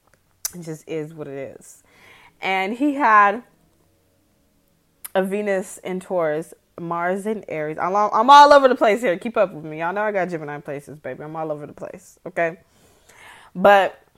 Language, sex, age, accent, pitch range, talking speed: English, female, 20-39, American, 180-225 Hz, 165 wpm